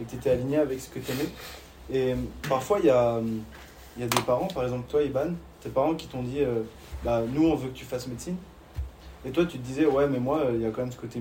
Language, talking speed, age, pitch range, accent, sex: French, 270 wpm, 20-39, 110-140 Hz, French, male